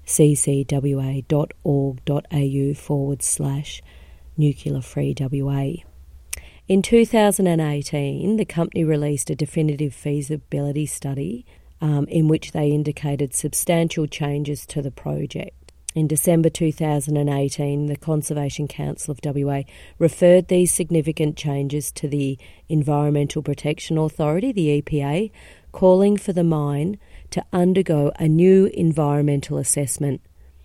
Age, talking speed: 40-59, 100 wpm